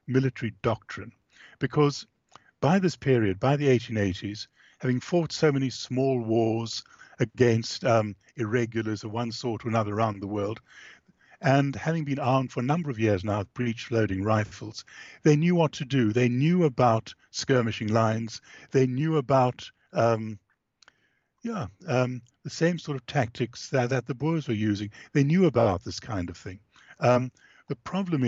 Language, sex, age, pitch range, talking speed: English, male, 60-79, 110-135 Hz, 160 wpm